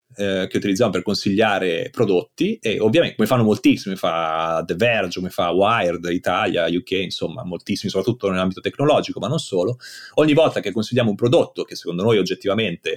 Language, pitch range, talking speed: Italian, 100-150 Hz, 170 wpm